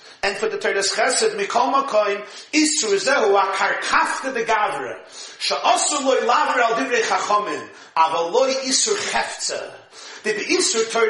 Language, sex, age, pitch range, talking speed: English, male, 40-59, 220-340 Hz, 135 wpm